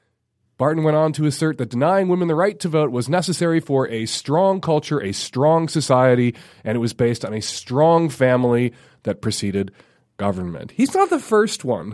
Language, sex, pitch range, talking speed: English, male, 120-180 Hz, 185 wpm